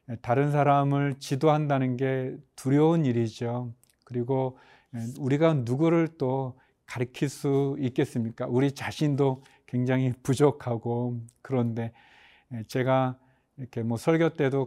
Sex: male